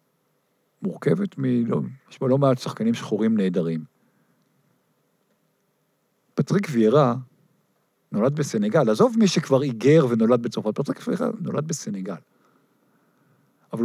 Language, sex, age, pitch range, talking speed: Hebrew, male, 50-69, 120-170 Hz, 110 wpm